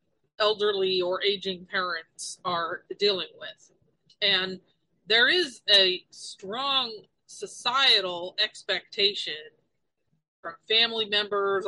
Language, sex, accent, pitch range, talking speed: English, female, American, 180-215 Hz, 85 wpm